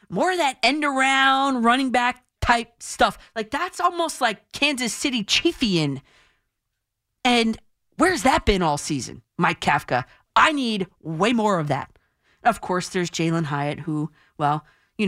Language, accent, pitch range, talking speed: English, American, 180-250 Hz, 145 wpm